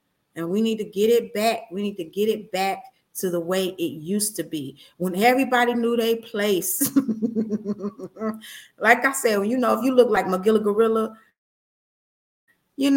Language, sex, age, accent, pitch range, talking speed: English, female, 30-49, American, 190-245 Hz, 170 wpm